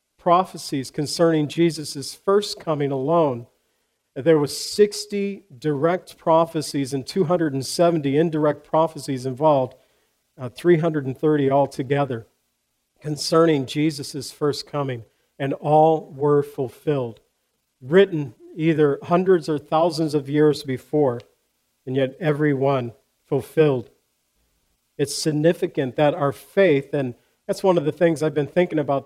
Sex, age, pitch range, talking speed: male, 50-69, 140-165 Hz, 115 wpm